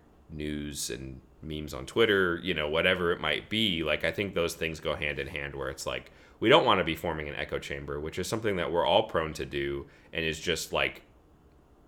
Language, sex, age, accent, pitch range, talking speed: English, male, 30-49, American, 75-105 Hz, 225 wpm